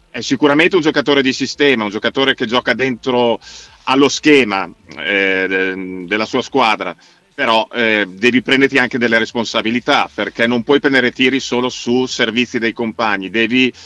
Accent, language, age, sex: native, Italian, 40-59, male